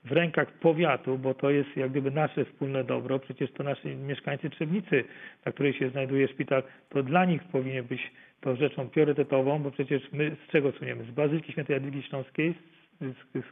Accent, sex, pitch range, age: native, male, 140-165 Hz, 40-59